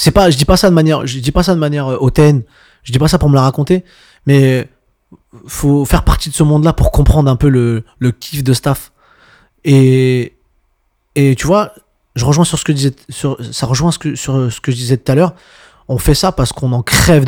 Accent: French